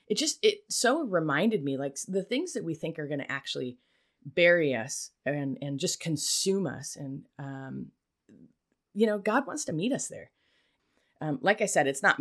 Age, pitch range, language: 30-49, 140-185 Hz, English